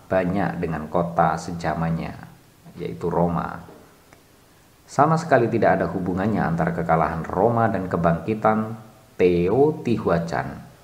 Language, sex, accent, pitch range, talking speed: Indonesian, male, native, 85-115 Hz, 95 wpm